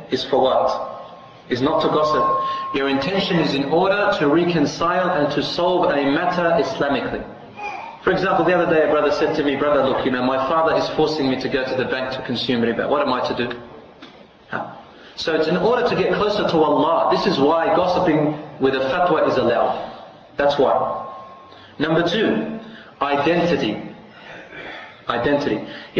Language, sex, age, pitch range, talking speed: English, male, 30-49, 140-180 Hz, 175 wpm